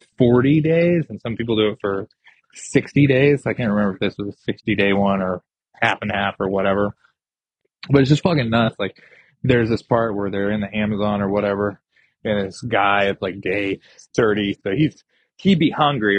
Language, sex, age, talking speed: English, male, 20-39, 200 wpm